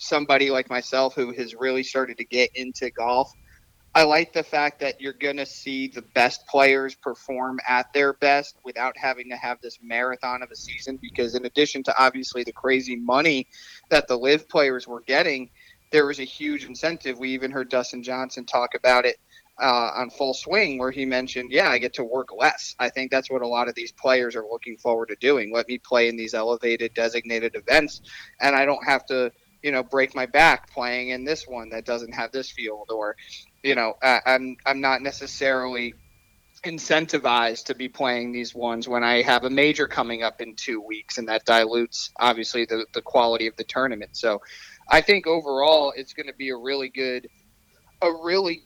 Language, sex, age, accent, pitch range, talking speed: English, male, 30-49, American, 120-140 Hz, 200 wpm